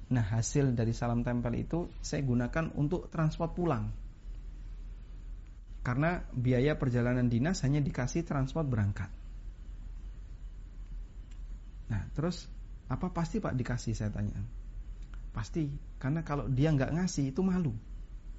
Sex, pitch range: male, 105-155 Hz